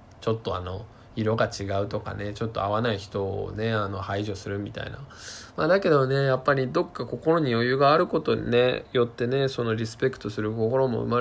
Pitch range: 105-130 Hz